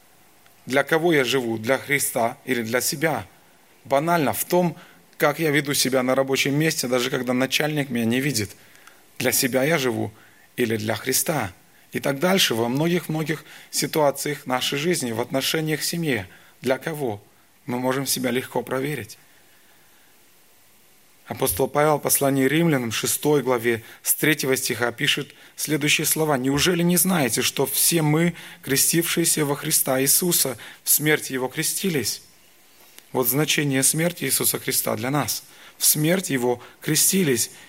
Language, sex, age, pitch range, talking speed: Russian, male, 30-49, 125-155 Hz, 140 wpm